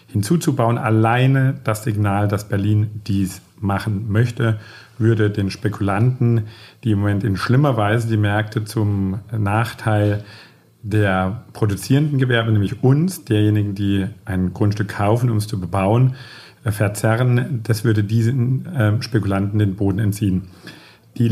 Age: 50-69